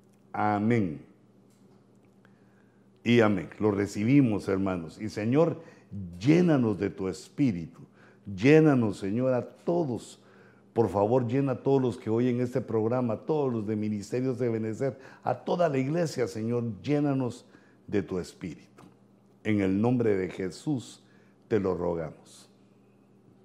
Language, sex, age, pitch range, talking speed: Spanish, male, 60-79, 100-130 Hz, 130 wpm